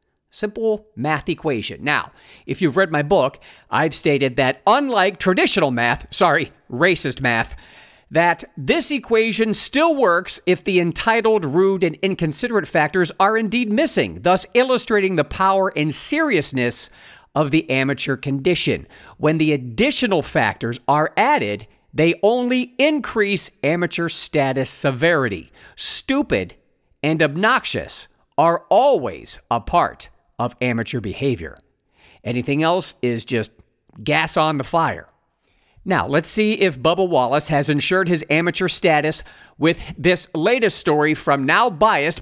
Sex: male